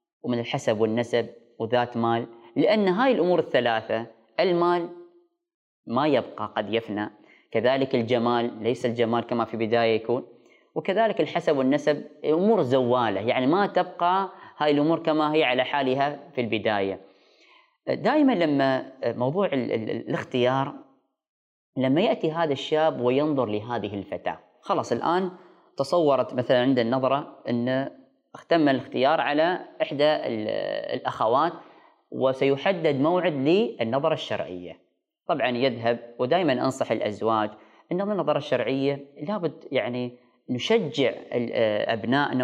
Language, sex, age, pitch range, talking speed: Arabic, female, 20-39, 120-165 Hz, 110 wpm